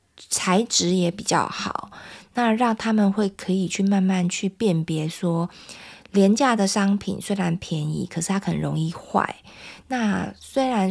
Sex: female